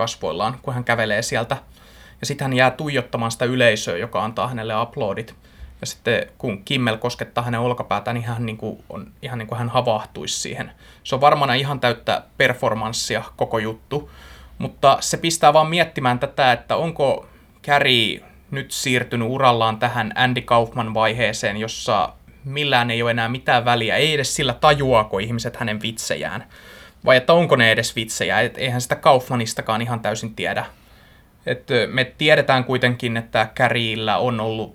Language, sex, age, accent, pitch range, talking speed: Finnish, male, 20-39, native, 115-135 Hz, 155 wpm